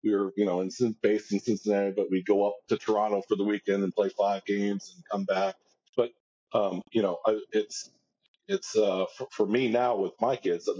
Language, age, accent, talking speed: English, 40-59, American, 215 wpm